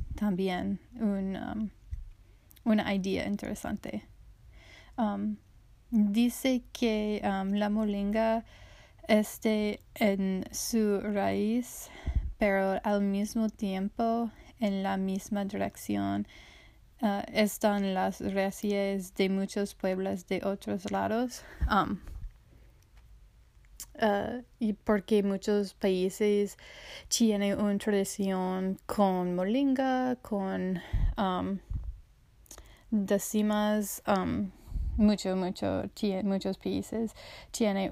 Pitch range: 190-215 Hz